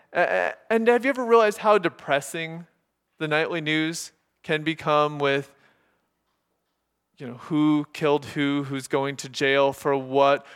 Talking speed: 140 wpm